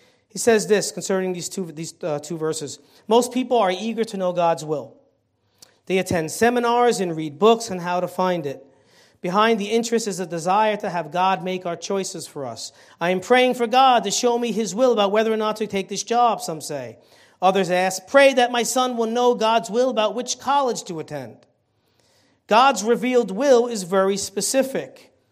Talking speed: 195 wpm